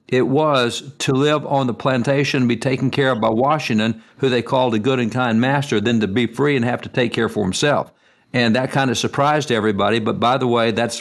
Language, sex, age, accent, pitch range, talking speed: English, male, 60-79, American, 115-130 Hz, 240 wpm